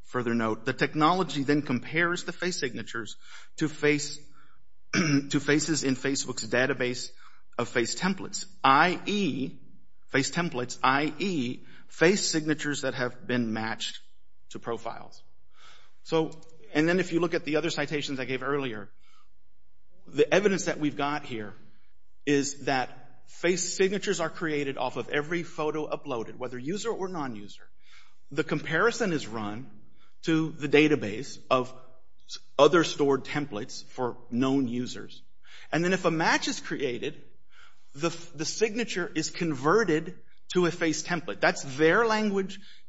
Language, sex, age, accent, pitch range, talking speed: English, male, 50-69, American, 130-170 Hz, 135 wpm